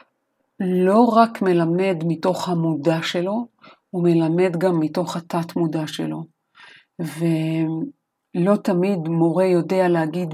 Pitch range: 165-210 Hz